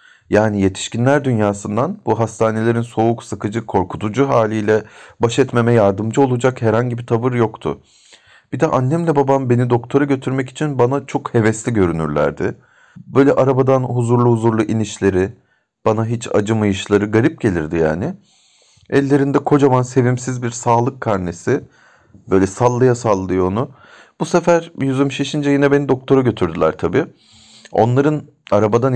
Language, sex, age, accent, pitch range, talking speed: Turkish, male, 40-59, native, 100-130 Hz, 125 wpm